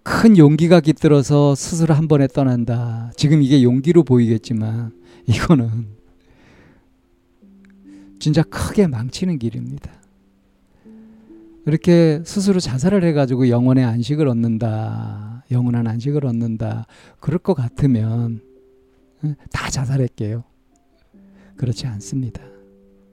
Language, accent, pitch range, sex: Korean, native, 110-150 Hz, male